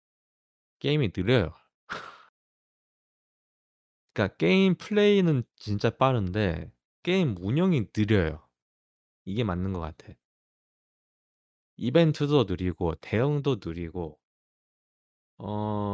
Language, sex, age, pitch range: Korean, male, 20-39, 90-125 Hz